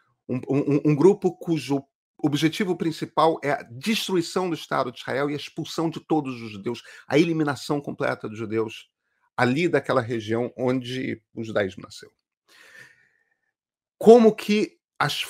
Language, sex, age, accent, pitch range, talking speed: Portuguese, male, 40-59, Brazilian, 110-145 Hz, 140 wpm